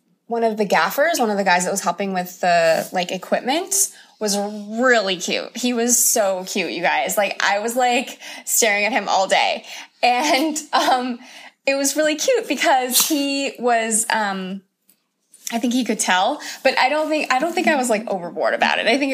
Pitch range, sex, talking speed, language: 190-245 Hz, female, 200 wpm, English